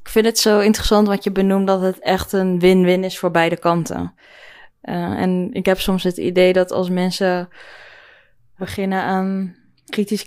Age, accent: 20-39, Dutch